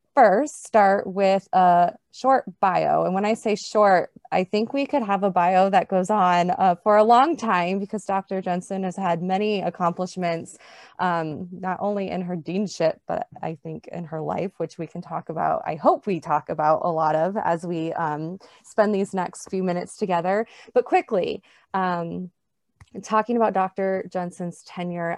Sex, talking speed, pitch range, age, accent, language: female, 180 wpm, 175-205 Hz, 20-39, American, English